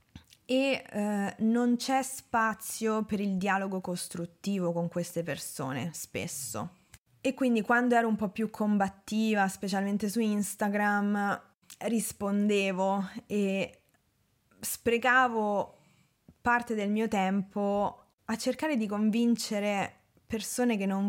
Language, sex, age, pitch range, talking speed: Italian, female, 20-39, 195-235 Hz, 105 wpm